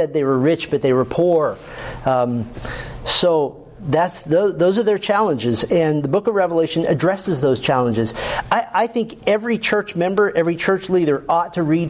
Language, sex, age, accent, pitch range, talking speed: English, male, 50-69, American, 135-185 Hz, 170 wpm